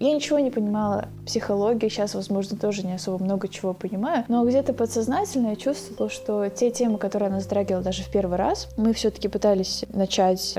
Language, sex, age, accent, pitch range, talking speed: Russian, female, 20-39, native, 190-235 Hz, 185 wpm